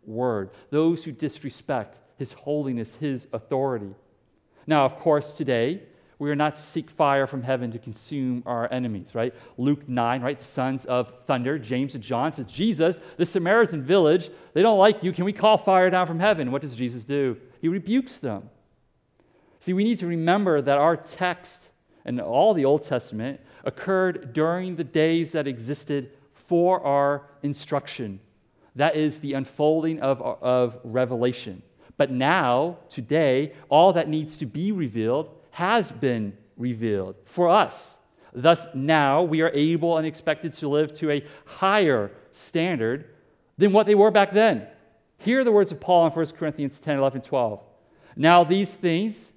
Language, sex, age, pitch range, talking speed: English, male, 40-59, 130-175 Hz, 165 wpm